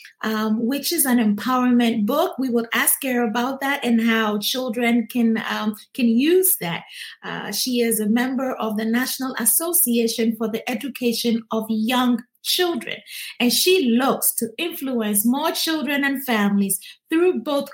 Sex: female